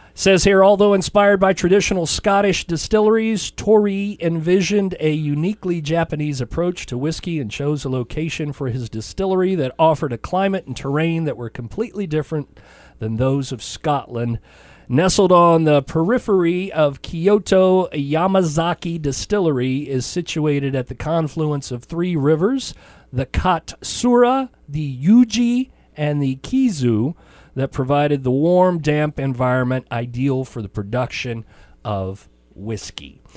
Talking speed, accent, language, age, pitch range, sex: 130 wpm, American, English, 40-59, 130-195 Hz, male